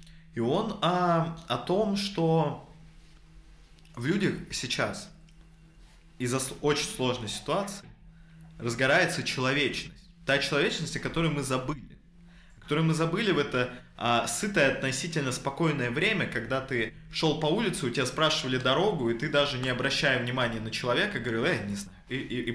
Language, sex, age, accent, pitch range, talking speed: Russian, male, 20-39, native, 125-170 Hz, 145 wpm